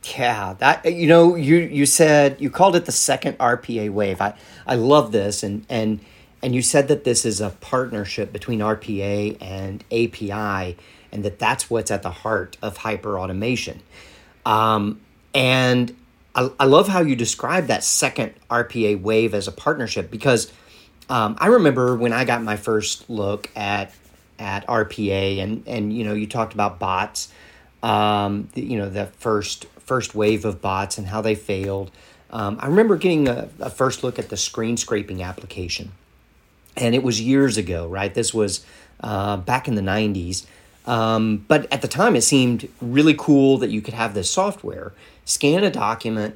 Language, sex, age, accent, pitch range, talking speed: English, male, 40-59, American, 100-125 Hz, 175 wpm